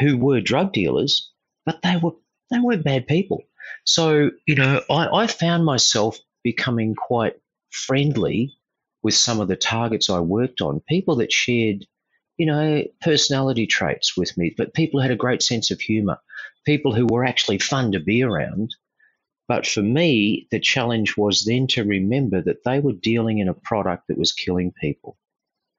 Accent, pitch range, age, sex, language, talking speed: Australian, 100-140 Hz, 40-59, male, English, 175 wpm